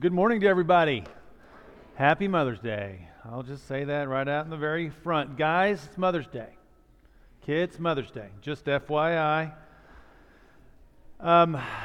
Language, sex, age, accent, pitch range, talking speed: English, male, 40-59, American, 135-165 Hz, 135 wpm